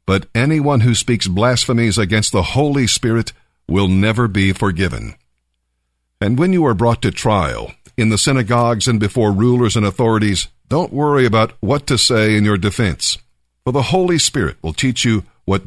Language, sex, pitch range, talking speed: English, male, 85-125 Hz, 170 wpm